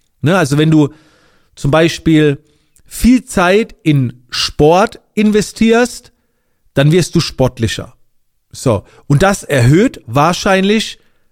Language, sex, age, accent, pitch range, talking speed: German, male, 40-59, German, 130-185 Hz, 100 wpm